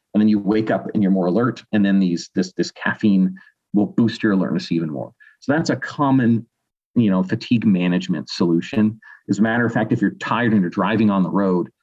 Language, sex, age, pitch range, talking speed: English, male, 40-59, 100-125 Hz, 225 wpm